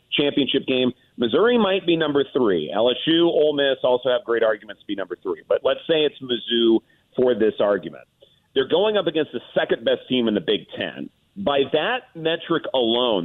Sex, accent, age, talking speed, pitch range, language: male, American, 40-59, 190 wpm, 120-160 Hz, English